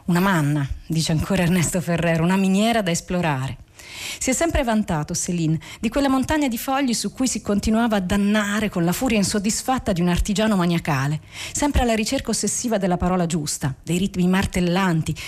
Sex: female